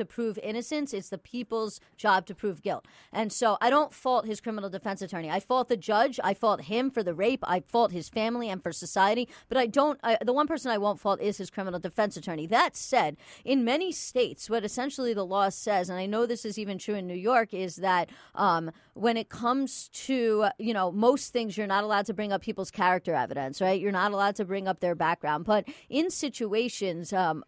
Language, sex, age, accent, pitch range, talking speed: English, female, 40-59, American, 195-240 Hz, 225 wpm